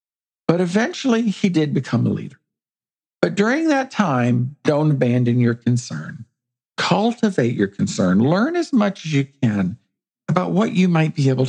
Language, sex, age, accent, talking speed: English, male, 50-69, American, 155 wpm